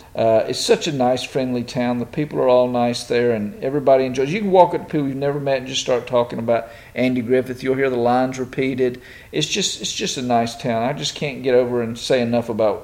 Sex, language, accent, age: male, English, American, 50-69